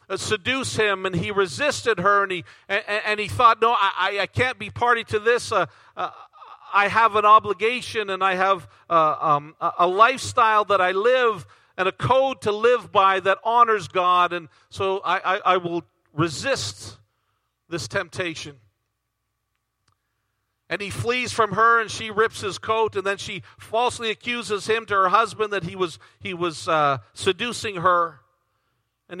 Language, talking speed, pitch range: English, 170 wpm, 180-230 Hz